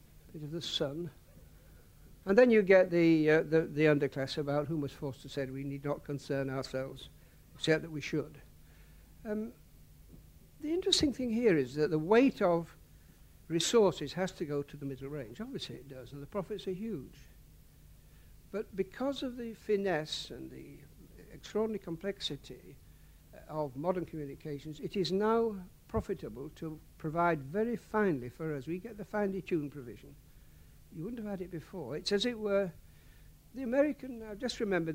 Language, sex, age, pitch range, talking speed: English, male, 60-79, 145-195 Hz, 165 wpm